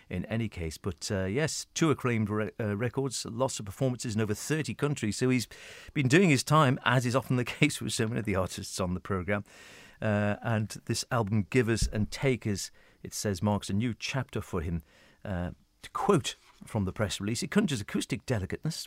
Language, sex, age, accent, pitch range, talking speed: English, male, 40-59, British, 95-125 Hz, 195 wpm